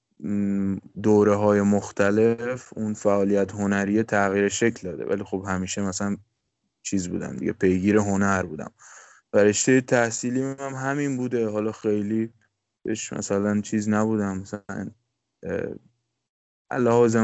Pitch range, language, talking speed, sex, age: 100-120 Hz, Persian, 110 wpm, male, 20-39